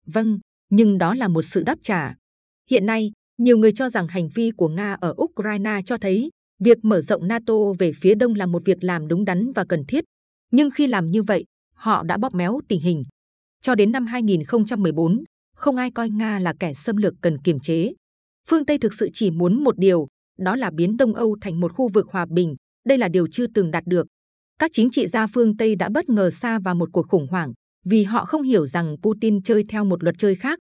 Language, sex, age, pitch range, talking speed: Vietnamese, female, 20-39, 180-235 Hz, 230 wpm